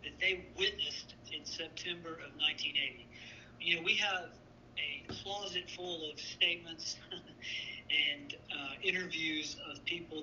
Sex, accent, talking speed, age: male, American, 125 wpm, 50-69